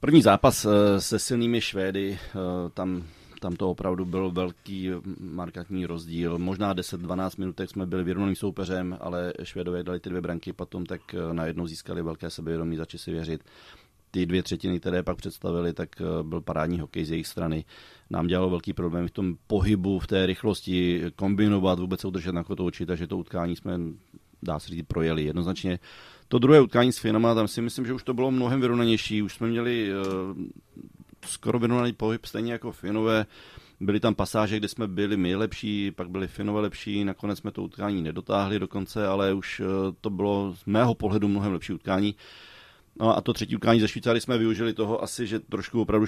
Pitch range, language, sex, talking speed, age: 90-105 Hz, Czech, male, 180 wpm, 30-49